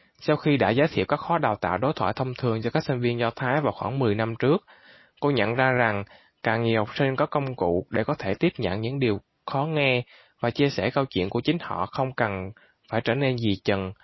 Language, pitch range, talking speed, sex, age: Vietnamese, 110-140 Hz, 250 wpm, male, 20-39